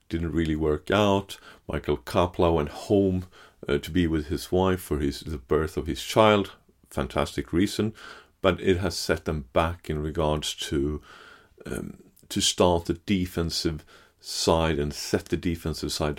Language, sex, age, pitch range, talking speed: English, male, 40-59, 80-100 Hz, 160 wpm